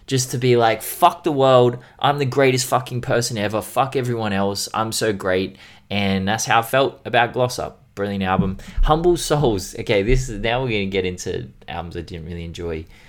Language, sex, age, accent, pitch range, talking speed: English, male, 20-39, Australian, 95-125 Hz, 205 wpm